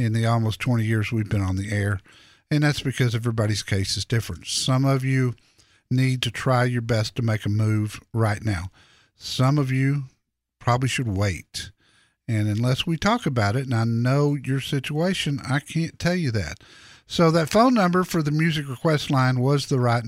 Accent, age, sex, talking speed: American, 50-69, male, 195 wpm